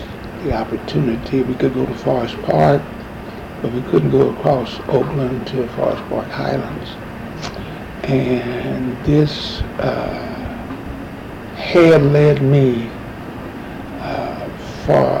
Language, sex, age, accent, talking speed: English, male, 60-79, American, 105 wpm